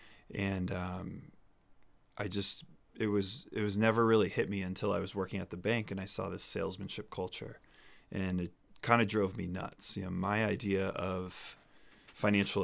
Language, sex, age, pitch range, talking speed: English, male, 20-39, 95-105 Hz, 180 wpm